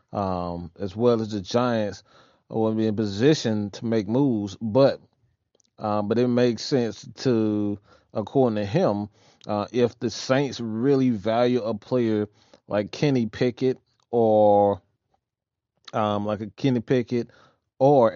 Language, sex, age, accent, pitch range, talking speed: English, male, 30-49, American, 100-125 Hz, 135 wpm